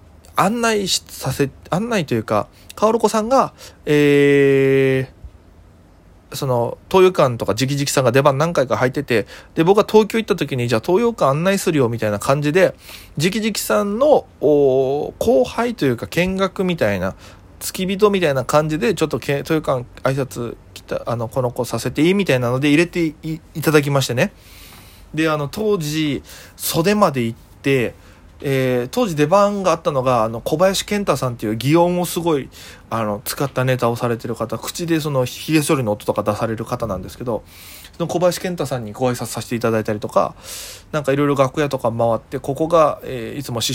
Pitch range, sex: 115-170 Hz, male